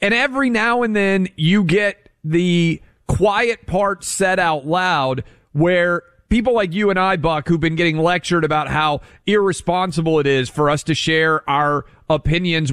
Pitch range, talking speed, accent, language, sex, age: 130-180 Hz, 165 wpm, American, English, male, 40-59